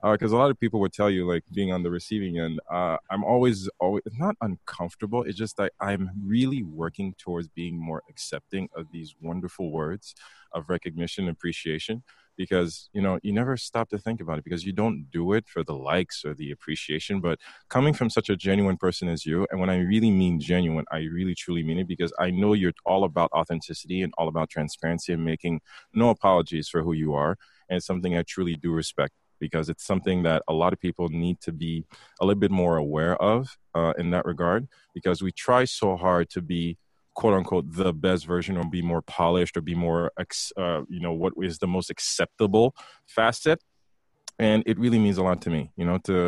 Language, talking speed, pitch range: English, 215 wpm, 85-95 Hz